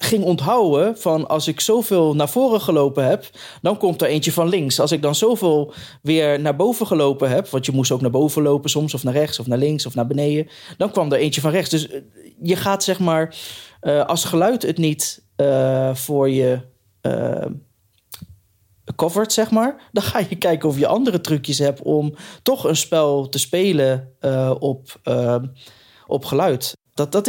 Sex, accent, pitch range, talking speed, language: male, Dutch, 130-165 Hz, 190 wpm, Dutch